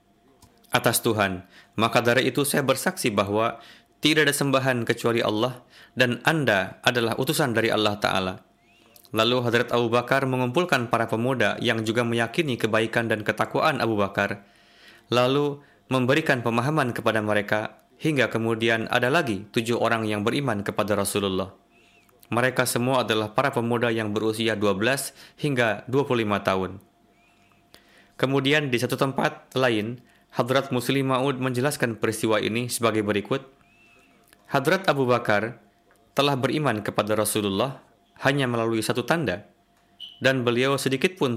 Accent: native